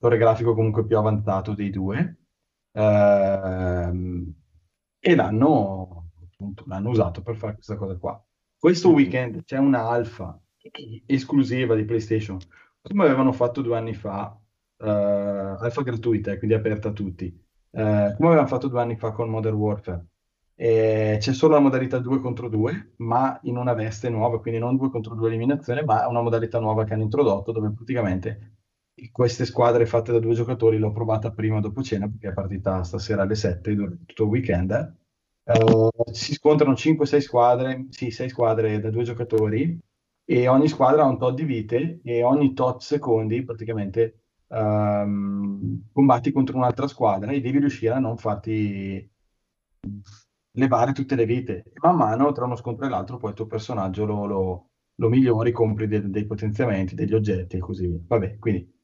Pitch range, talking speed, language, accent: 100-125 Hz, 165 wpm, Italian, native